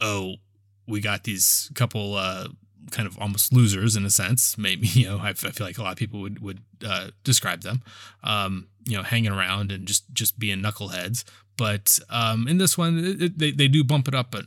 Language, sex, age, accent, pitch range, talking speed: English, male, 20-39, American, 100-115 Hz, 225 wpm